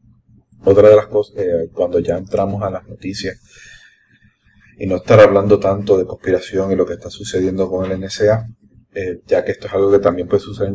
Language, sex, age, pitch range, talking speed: English, male, 30-49, 90-115 Hz, 205 wpm